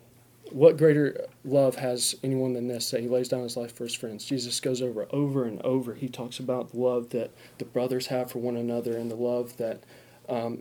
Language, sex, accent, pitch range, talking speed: English, male, American, 125-140 Hz, 220 wpm